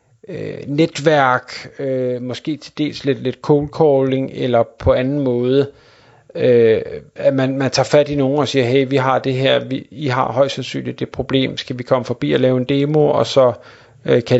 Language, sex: Danish, male